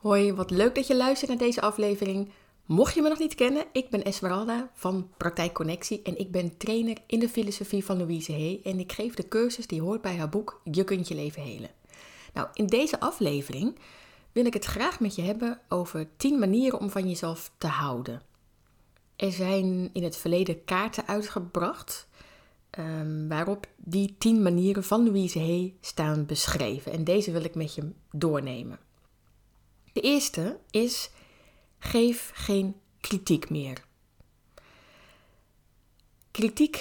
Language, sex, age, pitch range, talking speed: Dutch, female, 20-39, 170-215 Hz, 155 wpm